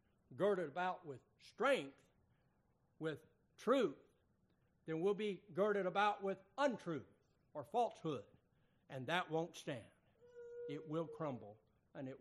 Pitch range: 135-185 Hz